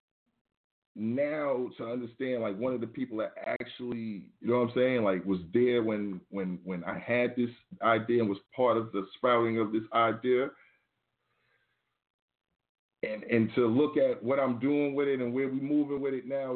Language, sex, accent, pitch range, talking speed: English, male, American, 110-125 Hz, 185 wpm